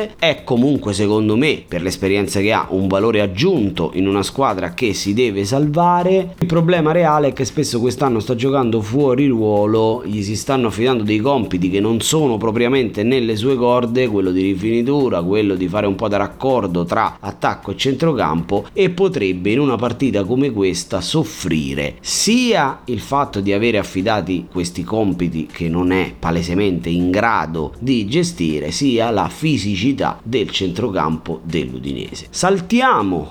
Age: 30-49